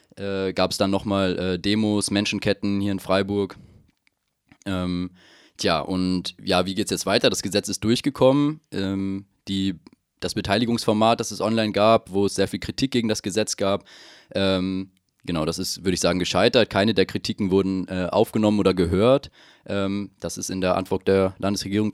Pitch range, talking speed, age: 95-105 Hz, 180 wpm, 20-39